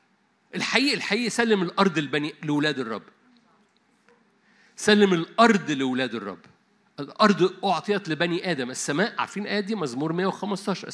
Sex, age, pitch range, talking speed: male, 50-69, 185-235 Hz, 115 wpm